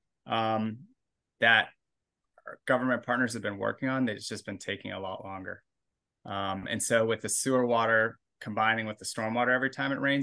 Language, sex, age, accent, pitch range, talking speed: English, male, 20-39, American, 100-125 Hz, 180 wpm